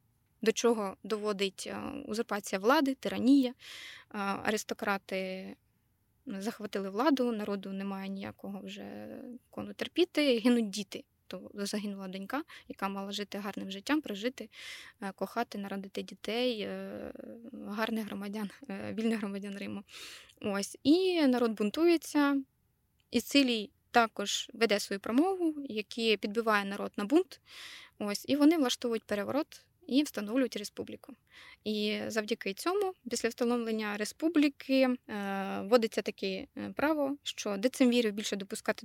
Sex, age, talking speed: female, 20-39, 110 wpm